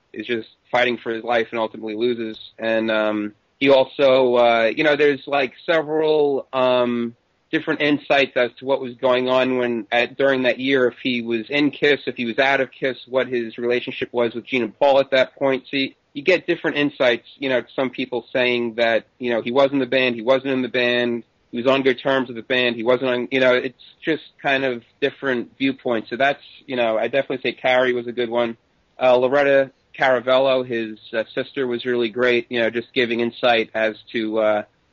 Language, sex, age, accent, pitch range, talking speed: English, male, 30-49, American, 115-130 Hz, 215 wpm